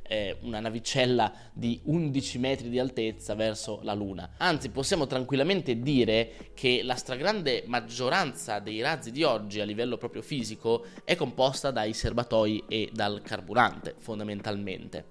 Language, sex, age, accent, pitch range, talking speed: Italian, male, 20-39, native, 115-140 Hz, 135 wpm